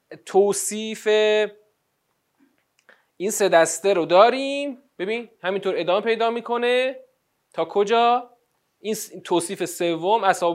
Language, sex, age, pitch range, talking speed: Persian, male, 30-49, 175-235 Hz, 95 wpm